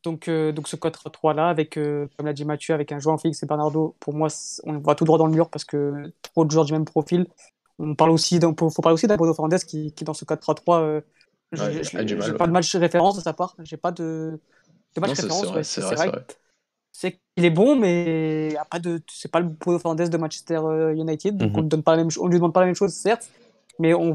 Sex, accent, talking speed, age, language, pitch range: female, French, 225 wpm, 20-39, French, 155-175 Hz